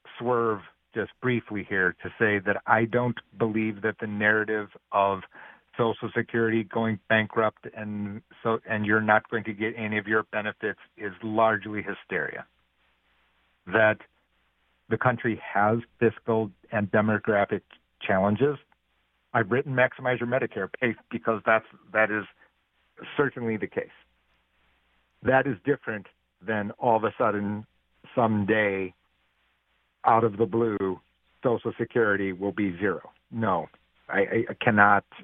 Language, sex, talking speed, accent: English, male, 130 wpm, American